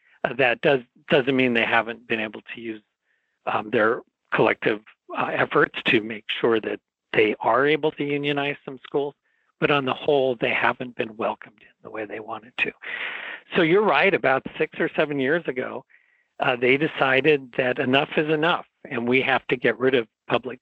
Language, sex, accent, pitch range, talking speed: English, male, American, 115-150 Hz, 190 wpm